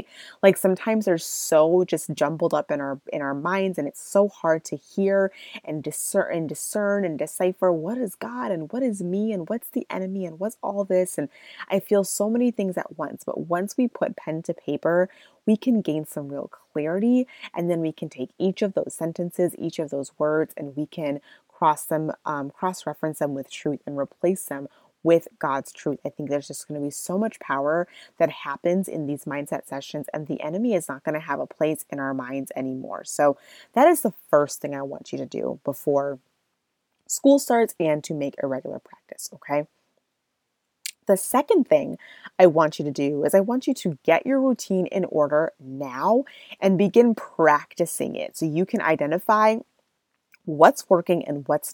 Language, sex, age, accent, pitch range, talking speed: English, female, 20-39, American, 150-205 Hz, 200 wpm